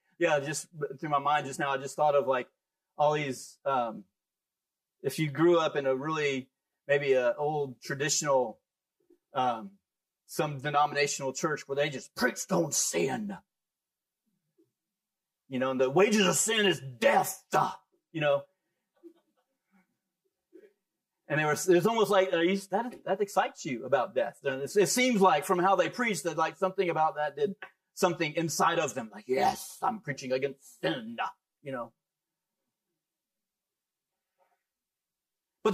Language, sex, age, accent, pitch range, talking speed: English, male, 30-49, American, 160-200 Hz, 145 wpm